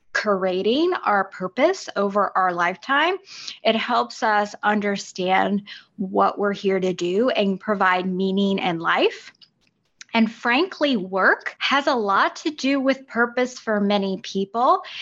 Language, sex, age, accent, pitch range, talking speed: English, female, 20-39, American, 200-260 Hz, 130 wpm